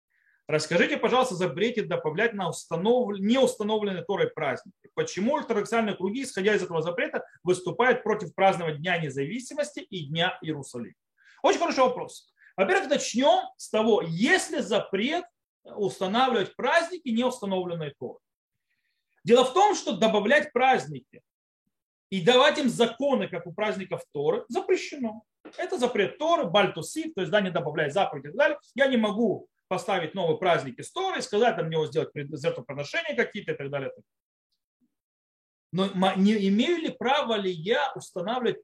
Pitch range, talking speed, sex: 170-255 Hz, 145 wpm, male